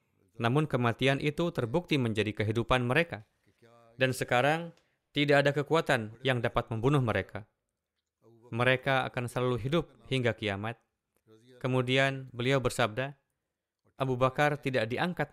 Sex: male